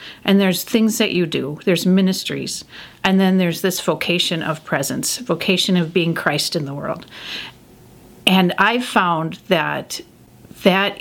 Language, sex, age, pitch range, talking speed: English, female, 50-69, 175-220 Hz, 145 wpm